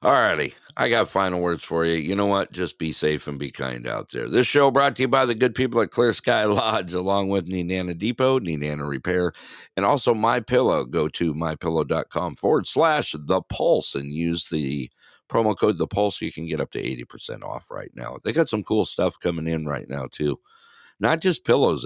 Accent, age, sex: American, 60-79, male